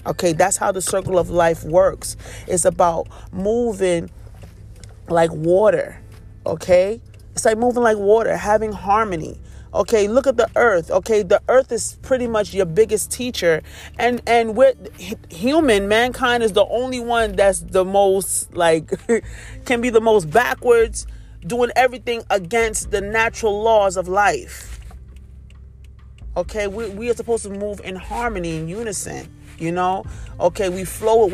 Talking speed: 150 wpm